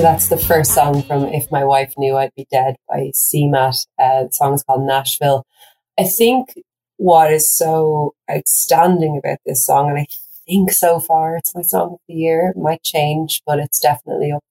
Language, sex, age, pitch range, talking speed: English, female, 30-49, 135-155 Hz, 195 wpm